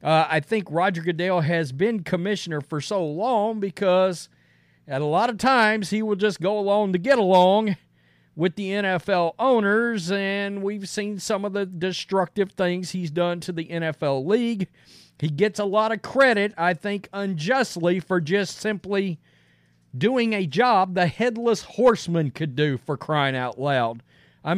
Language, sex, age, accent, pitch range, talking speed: English, male, 40-59, American, 155-215 Hz, 165 wpm